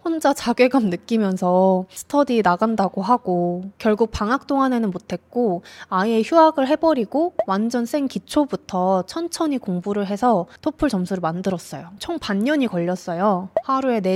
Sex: female